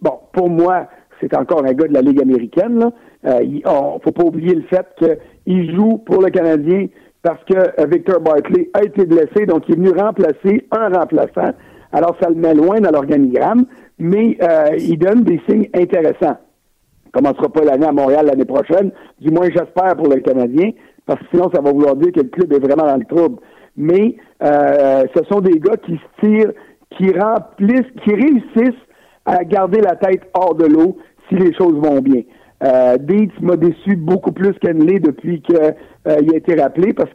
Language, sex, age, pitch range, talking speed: French, male, 60-79, 155-210 Hz, 200 wpm